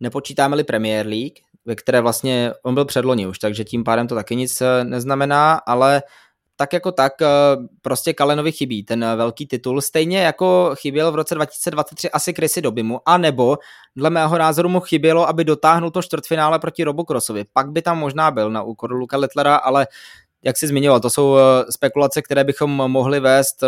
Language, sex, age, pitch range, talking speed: Czech, male, 20-39, 130-160 Hz, 180 wpm